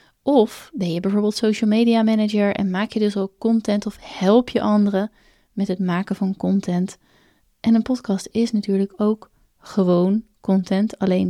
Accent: Dutch